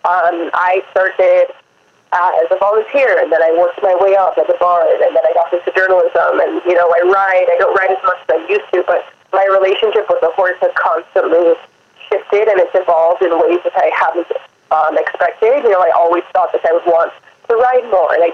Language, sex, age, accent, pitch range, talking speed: English, female, 20-39, American, 175-200 Hz, 230 wpm